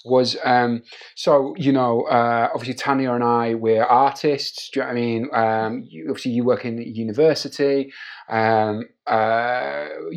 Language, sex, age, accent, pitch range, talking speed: English, male, 30-49, British, 120-140 Hz, 160 wpm